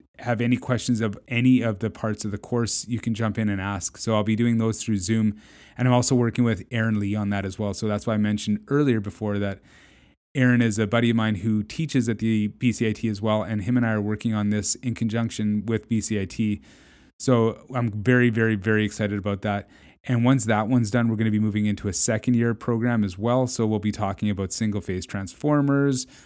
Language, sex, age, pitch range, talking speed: English, male, 30-49, 105-120 Hz, 245 wpm